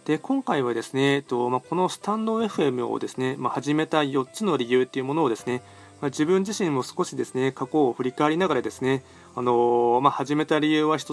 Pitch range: 125-145 Hz